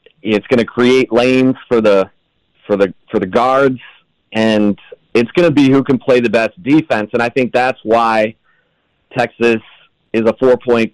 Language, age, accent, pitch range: English, 30-49, American, 110-130 Hz